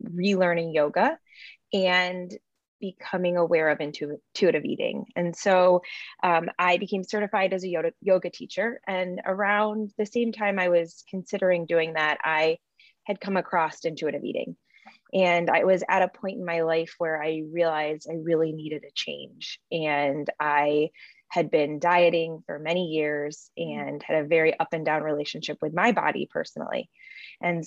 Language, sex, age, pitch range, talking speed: English, female, 20-39, 165-215 Hz, 155 wpm